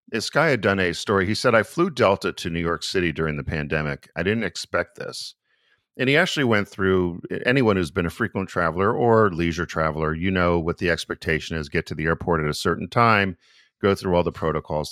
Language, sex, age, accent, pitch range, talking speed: English, male, 50-69, American, 80-95 Hz, 220 wpm